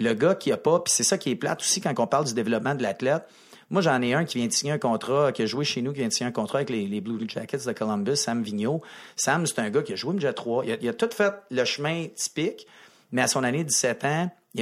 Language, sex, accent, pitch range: French, male, Canadian, 115-150 Hz